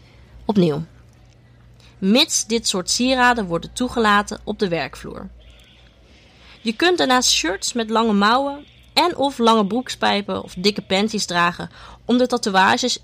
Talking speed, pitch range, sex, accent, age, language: 130 wpm, 170-235 Hz, female, Dutch, 20-39, Dutch